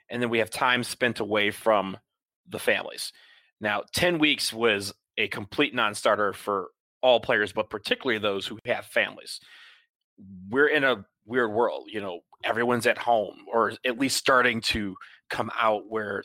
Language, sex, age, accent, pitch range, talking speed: English, male, 30-49, American, 110-130 Hz, 165 wpm